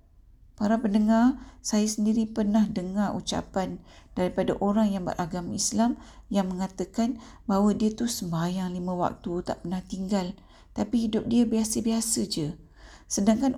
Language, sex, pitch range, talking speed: Malay, female, 175-215 Hz, 130 wpm